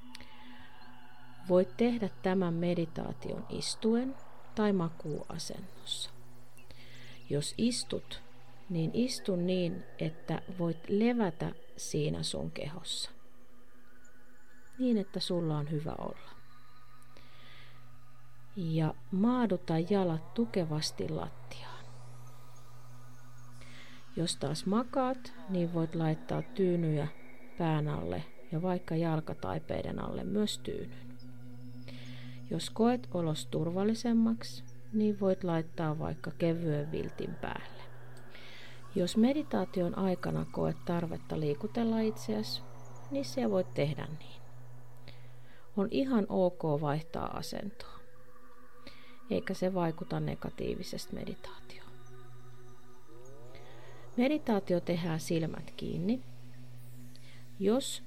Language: Finnish